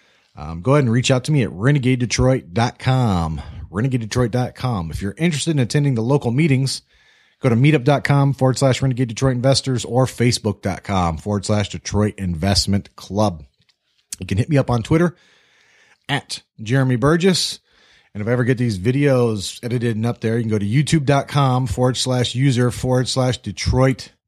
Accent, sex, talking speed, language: American, male, 160 wpm, English